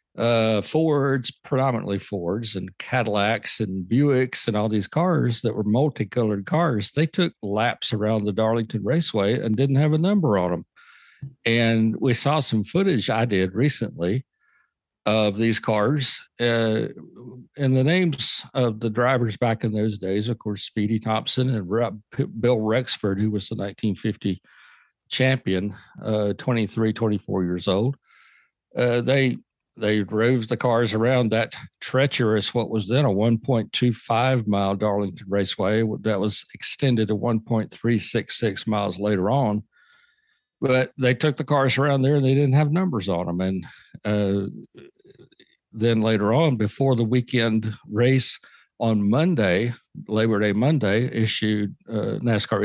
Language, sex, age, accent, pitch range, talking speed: English, male, 60-79, American, 105-130 Hz, 140 wpm